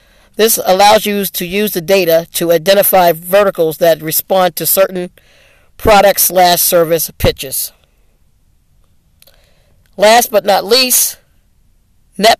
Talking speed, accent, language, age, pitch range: 110 wpm, American, English, 40-59, 170-210 Hz